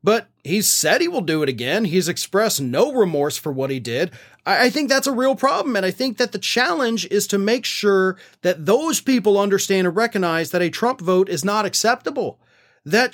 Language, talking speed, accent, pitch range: English, 215 wpm, American, 150-215 Hz